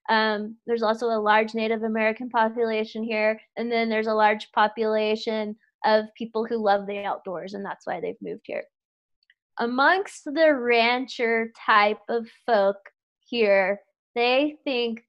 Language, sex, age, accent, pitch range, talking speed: English, female, 20-39, American, 215-265 Hz, 145 wpm